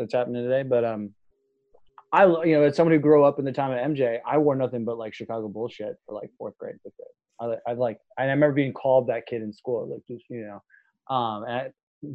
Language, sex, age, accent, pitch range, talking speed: English, male, 20-39, American, 135-180 Hz, 230 wpm